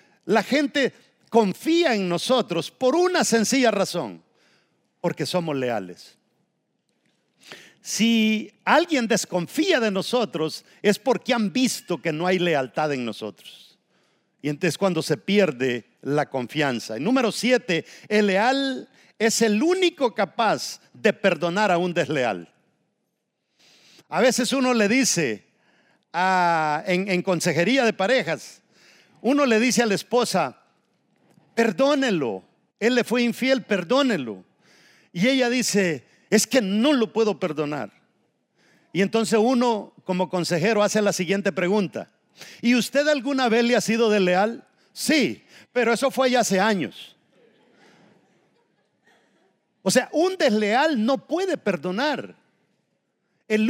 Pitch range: 180-250 Hz